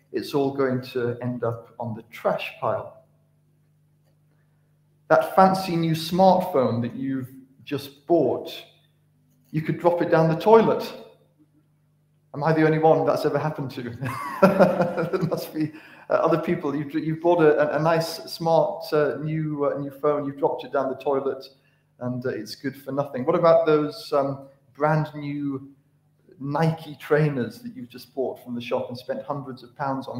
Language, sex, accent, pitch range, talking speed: English, male, British, 140-165 Hz, 165 wpm